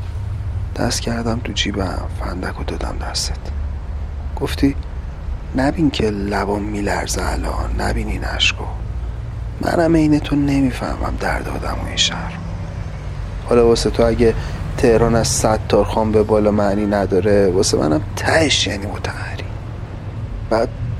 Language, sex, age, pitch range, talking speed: Persian, male, 40-59, 90-110 Hz, 120 wpm